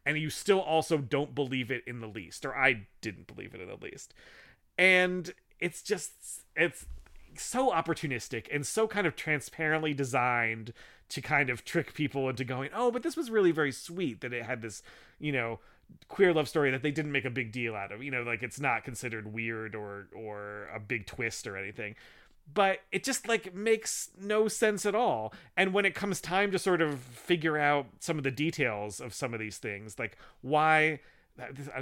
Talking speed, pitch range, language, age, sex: 200 wpm, 120-165 Hz, English, 30-49, male